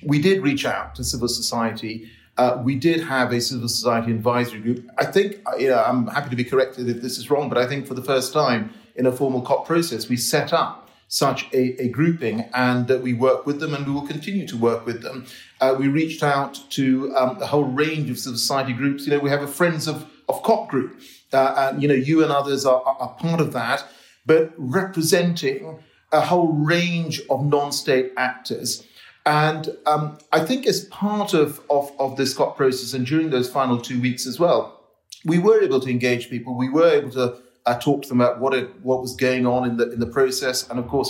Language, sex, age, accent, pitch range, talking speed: English, male, 40-59, British, 125-150 Hz, 225 wpm